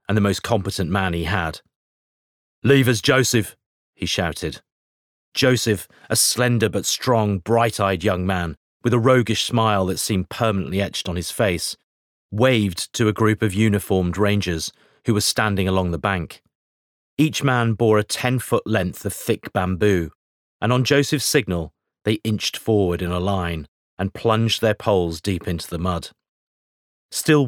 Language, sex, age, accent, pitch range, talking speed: English, male, 40-59, British, 90-115 Hz, 155 wpm